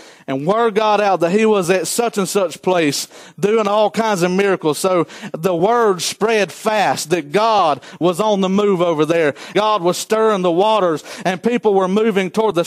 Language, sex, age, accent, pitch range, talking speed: English, male, 40-59, American, 195-235 Hz, 195 wpm